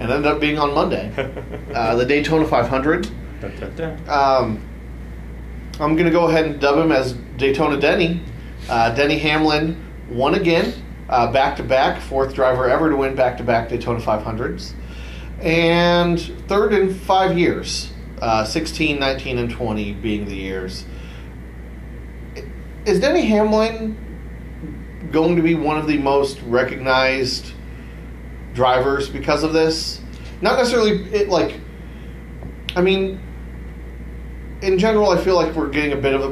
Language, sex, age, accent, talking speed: English, male, 30-49, American, 135 wpm